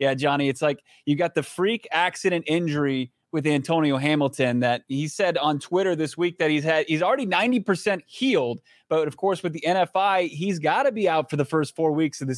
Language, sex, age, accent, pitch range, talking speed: English, male, 20-39, American, 145-175 Hz, 225 wpm